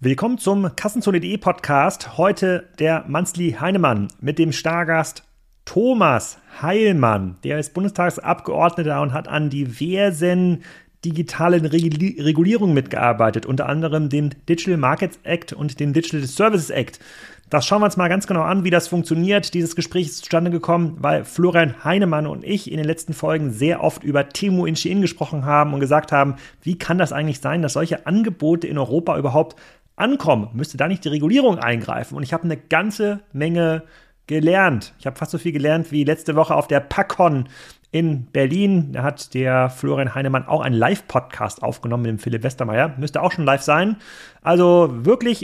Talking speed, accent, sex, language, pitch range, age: 170 wpm, German, male, German, 145-175 Hz, 30-49